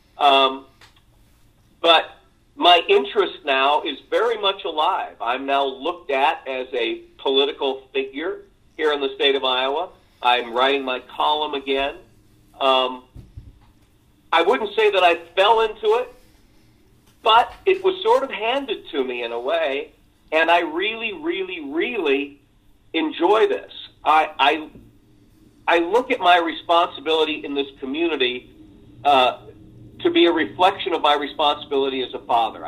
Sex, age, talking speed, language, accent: male, 50-69, 140 wpm, English, American